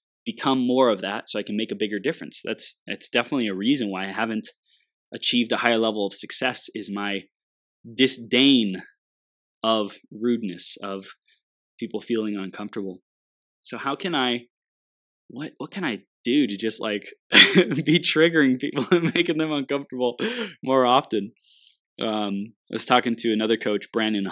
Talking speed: 155 wpm